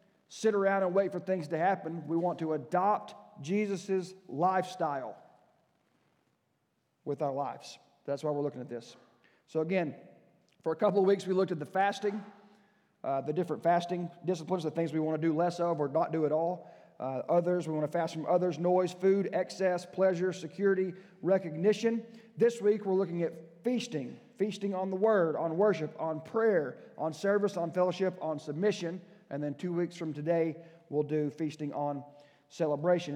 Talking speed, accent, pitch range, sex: 175 wpm, American, 150-195 Hz, male